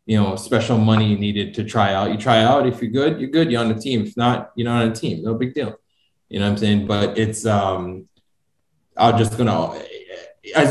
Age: 20-39